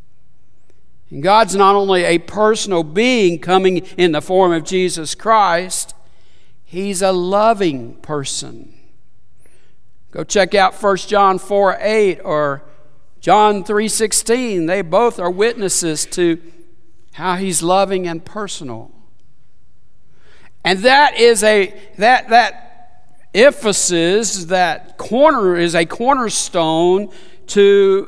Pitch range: 170-230 Hz